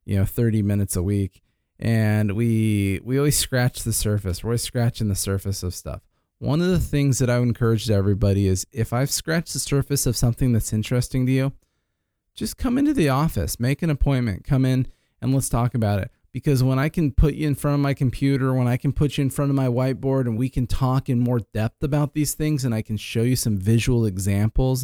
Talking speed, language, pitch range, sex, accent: 230 wpm, English, 110-140 Hz, male, American